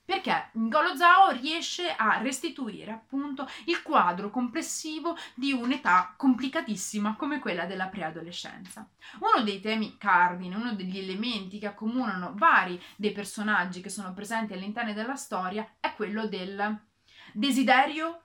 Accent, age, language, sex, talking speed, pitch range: native, 30-49, Italian, female, 130 wpm, 195-265 Hz